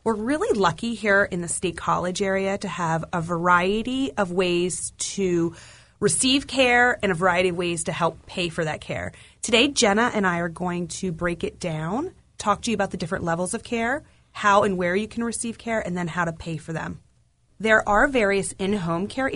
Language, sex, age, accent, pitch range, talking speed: English, female, 30-49, American, 170-225 Hz, 210 wpm